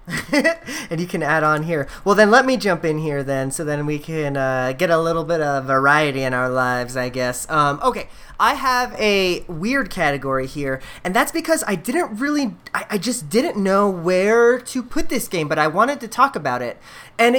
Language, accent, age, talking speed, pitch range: English, American, 30-49, 215 wpm, 150-225 Hz